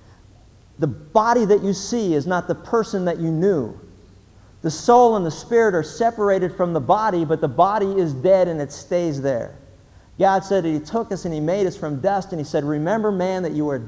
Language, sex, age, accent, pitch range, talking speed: English, male, 50-69, American, 145-200 Hz, 215 wpm